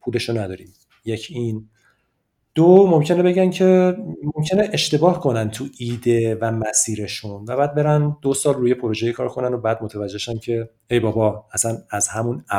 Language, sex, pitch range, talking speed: Persian, male, 110-145 Hz, 155 wpm